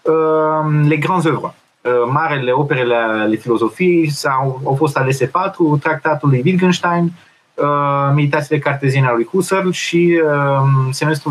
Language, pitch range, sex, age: Romanian, 125-160 Hz, male, 30-49